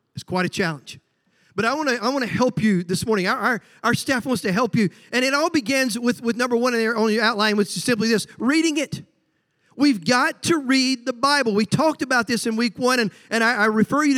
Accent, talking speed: American, 240 wpm